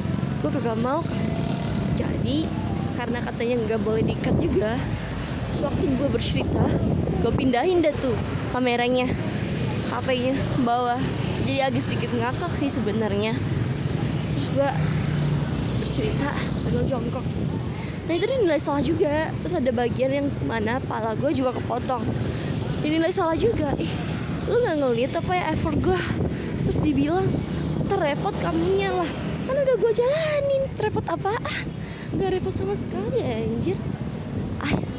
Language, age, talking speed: Indonesian, 20-39, 130 wpm